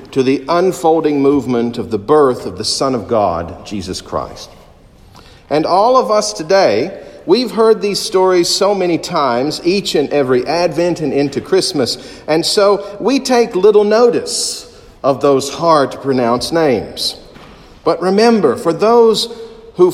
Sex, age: male, 50-69